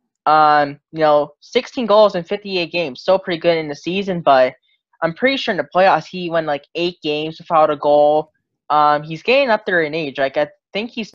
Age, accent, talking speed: 10-29, American, 215 wpm